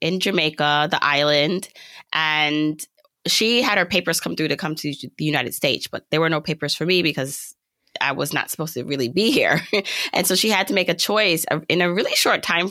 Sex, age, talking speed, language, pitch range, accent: female, 20-39, 215 wpm, English, 145-180 Hz, American